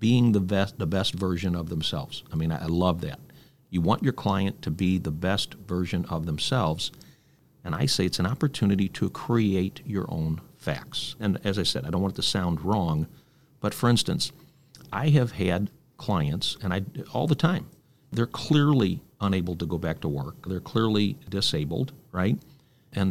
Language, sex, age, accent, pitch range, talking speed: English, male, 50-69, American, 95-140 Hz, 180 wpm